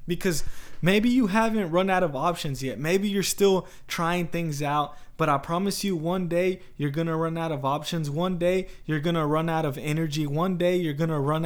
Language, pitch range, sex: English, 140-175 Hz, male